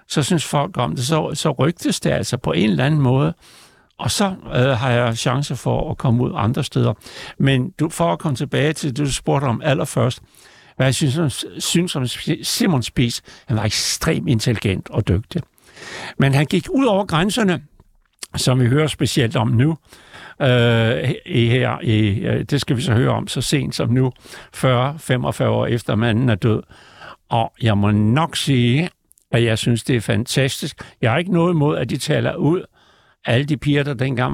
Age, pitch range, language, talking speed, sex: 60-79, 120-155 Hz, Danish, 190 wpm, male